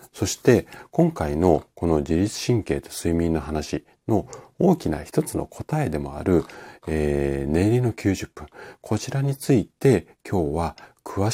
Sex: male